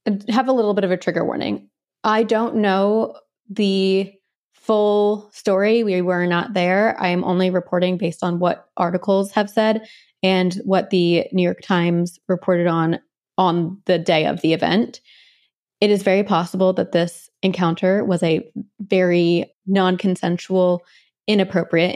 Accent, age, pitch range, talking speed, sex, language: American, 20-39, 175-215 Hz, 150 wpm, female, English